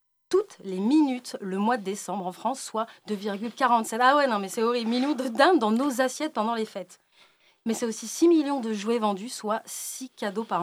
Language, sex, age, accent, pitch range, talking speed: French, female, 30-49, French, 195-255 Hz, 215 wpm